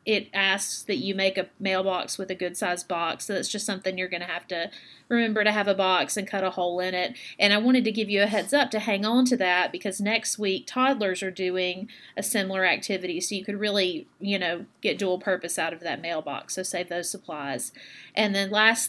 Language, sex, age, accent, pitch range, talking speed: English, female, 30-49, American, 185-220 Hz, 235 wpm